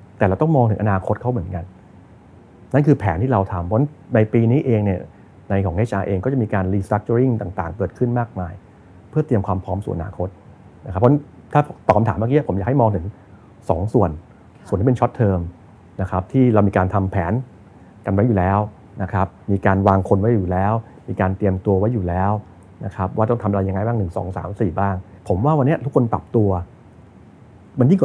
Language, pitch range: Thai, 95-120 Hz